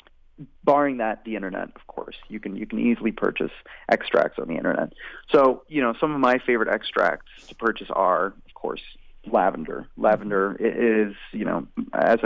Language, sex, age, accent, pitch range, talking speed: English, male, 30-49, American, 105-130 Hz, 170 wpm